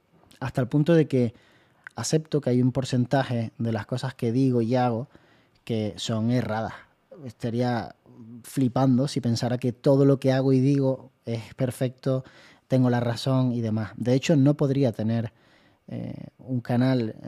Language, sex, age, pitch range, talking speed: Spanish, male, 20-39, 120-135 Hz, 160 wpm